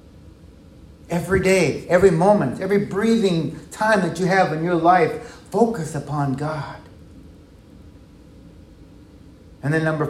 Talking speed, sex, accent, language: 115 wpm, male, American, English